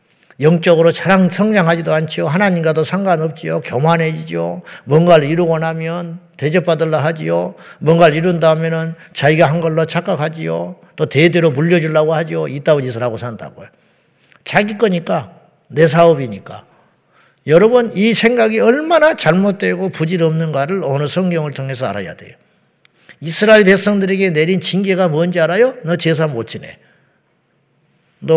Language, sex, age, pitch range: Korean, male, 50-69, 160-215 Hz